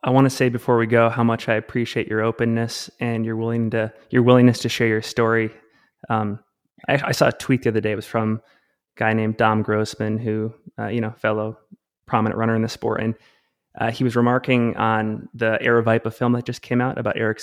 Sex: male